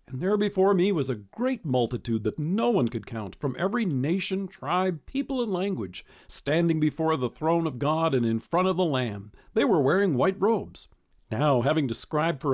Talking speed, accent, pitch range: 195 wpm, American, 125-195 Hz